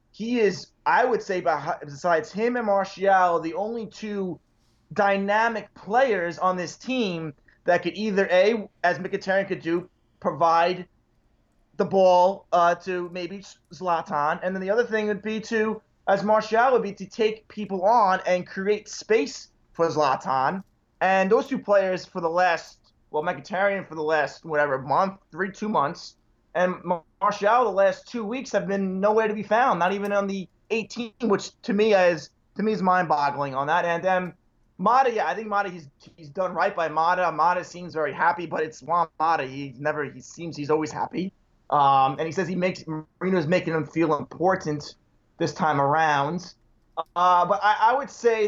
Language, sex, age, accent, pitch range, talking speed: English, male, 20-39, American, 160-205 Hz, 180 wpm